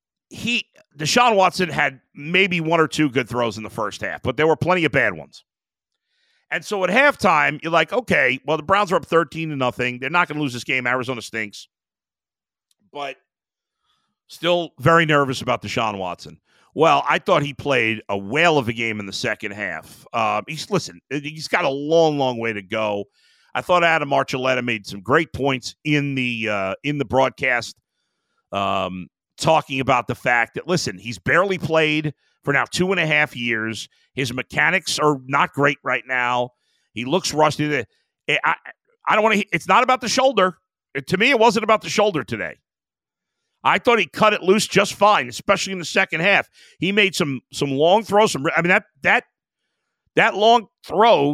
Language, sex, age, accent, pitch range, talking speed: English, male, 50-69, American, 125-180 Hz, 195 wpm